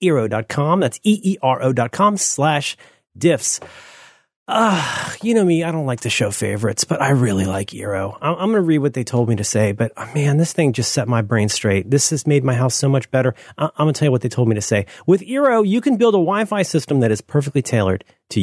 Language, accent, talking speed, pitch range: English, American, 230 wpm, 115-160 Hz